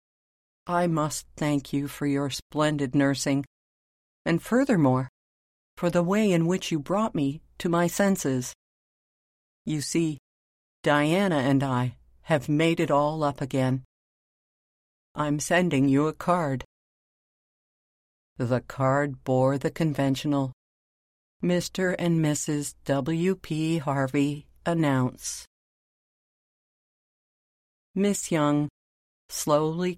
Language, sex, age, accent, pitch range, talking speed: English, female, 50-69, American, 135-170 Hz, 100 wpm